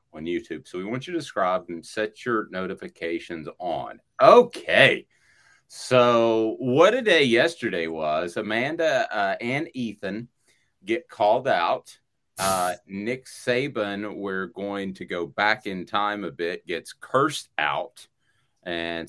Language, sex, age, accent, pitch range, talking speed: English, male, 40-59, American, 85-110 Hz, 135 wpm